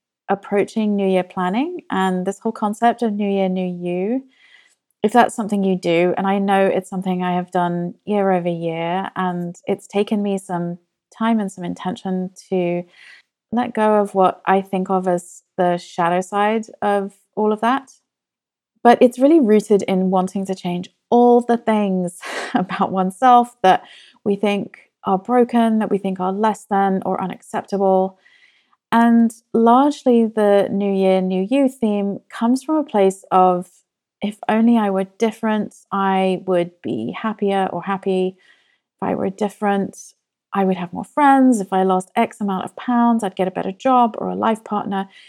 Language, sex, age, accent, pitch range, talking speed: English, female, 30-49, British, 185-225 Hz, 170 wpm